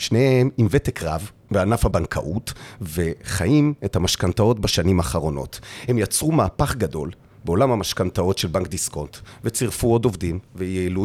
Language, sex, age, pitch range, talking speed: Hebrew, male, 40-59, 90-130 Hz, 130 wpm